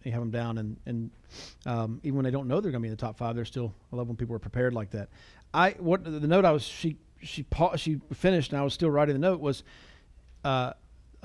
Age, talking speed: 40-59, 260 wpm